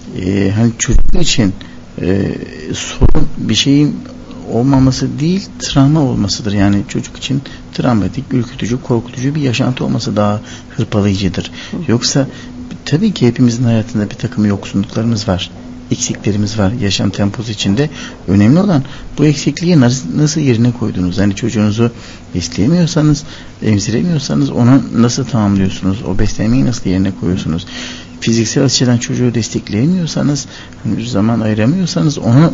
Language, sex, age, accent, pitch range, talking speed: Turkish, male, 60-79, native, 105-135 Hz, 120 wpm